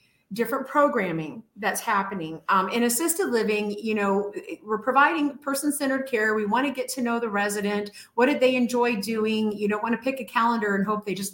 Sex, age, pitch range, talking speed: female, 30-49, 195-255 Hz, 200 wpm